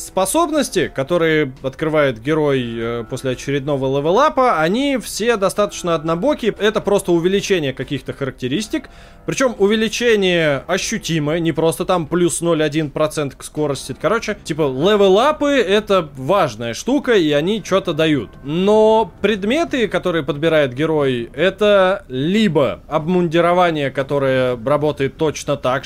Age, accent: 20-39, native